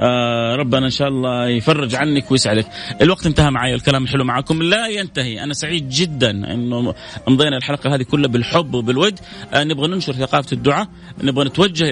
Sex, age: male, 30-49